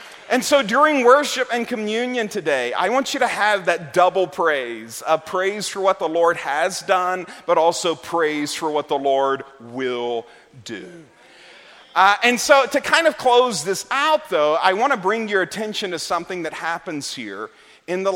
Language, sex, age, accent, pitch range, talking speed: English, male, 40-59, American, 155-225 Hz, 180 wpm